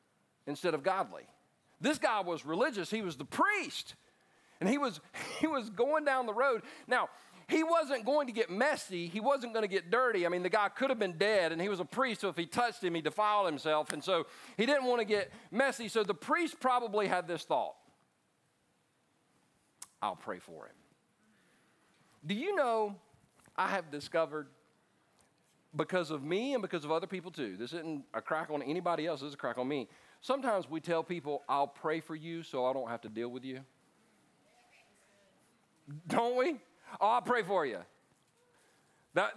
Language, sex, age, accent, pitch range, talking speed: English, male, 40-59, American, 160-220 Hz, 190 wpm